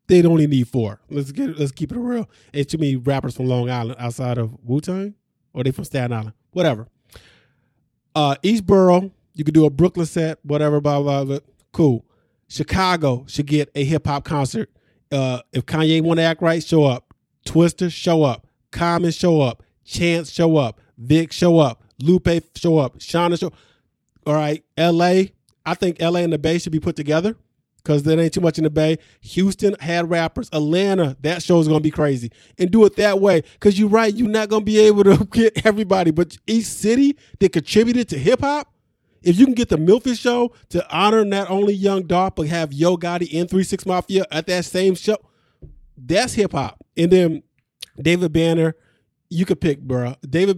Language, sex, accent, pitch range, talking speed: English, male, American, 140-185 Hz, 200 wpm